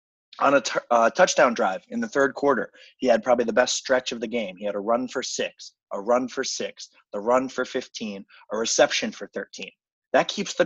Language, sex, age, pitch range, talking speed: English, male, 20-39, 125-175 Hz, 220 wpm